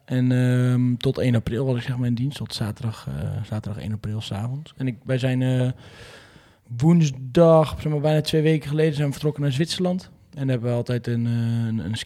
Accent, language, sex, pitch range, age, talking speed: Dutch, Dutch, male, 105-125 Hz, 20-39, 200 wpm